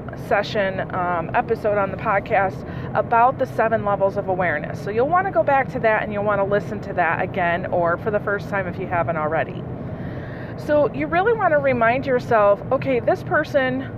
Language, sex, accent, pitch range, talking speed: English, female, American, 185-255 Hz, 200 wpm